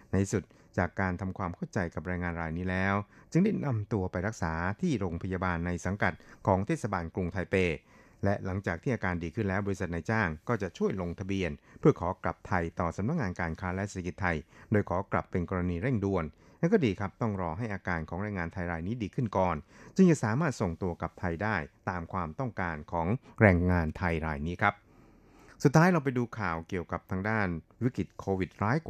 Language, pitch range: Thai, 90-110 Hz